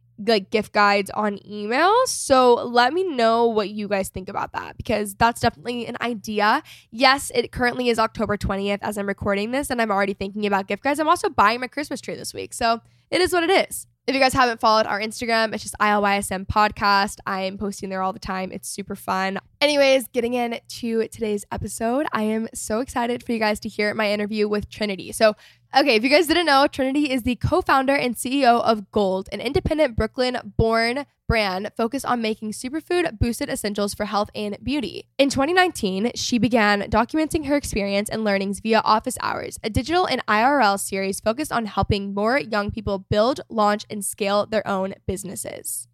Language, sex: English, female